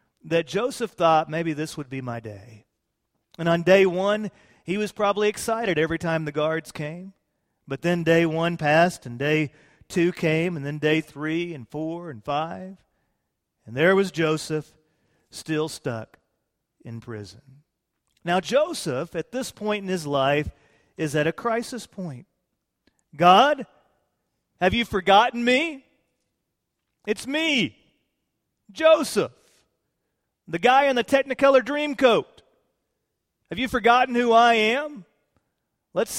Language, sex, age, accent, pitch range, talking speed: English, male, 40-59, American, 160-250 Hz, 135 wpm